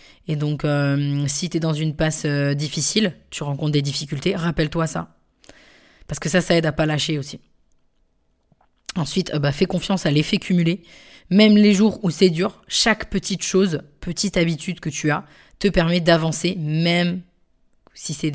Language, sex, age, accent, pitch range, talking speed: French, female, 20-39, French, 150-180 Hz, 175 wpm